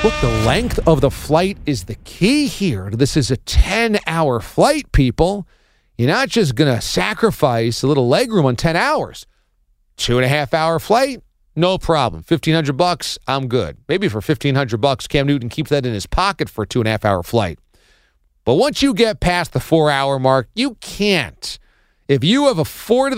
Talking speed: 170 wpm